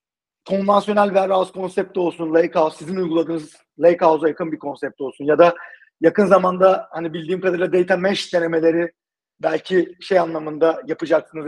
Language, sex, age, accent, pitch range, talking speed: Turkish, male, 40-59, native, 155-190 Hz, 145 wpm